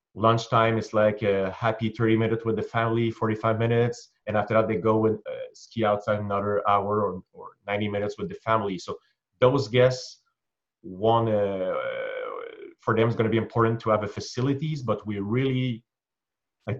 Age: 30-49